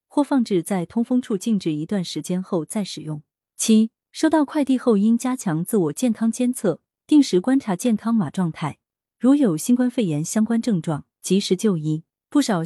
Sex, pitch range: female, 160-235 Hz